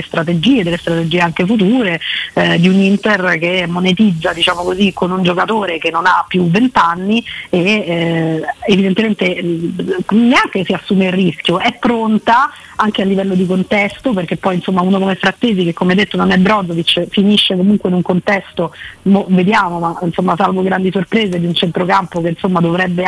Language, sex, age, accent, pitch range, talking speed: Italian, female, 30-49, native, 170-200 Hz, 170 wpm